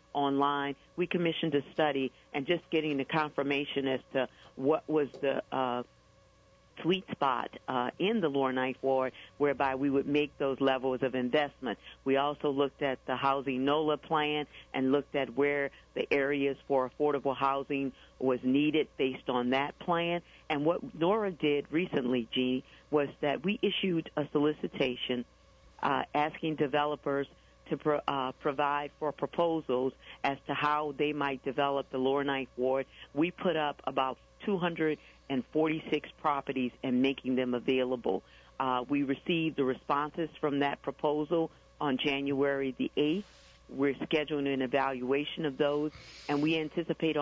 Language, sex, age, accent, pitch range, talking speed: English, female, 50-69, American, 135-155 Hz, 145 wpm